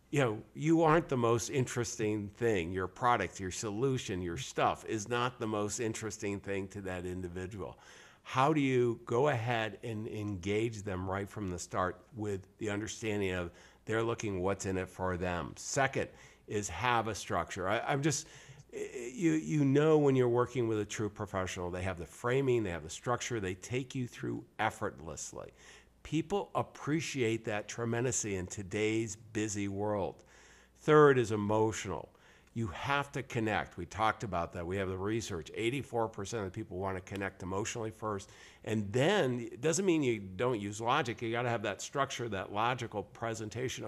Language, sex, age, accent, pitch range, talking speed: English, male, 50-69, American, 100-125 Hz, 170 wpm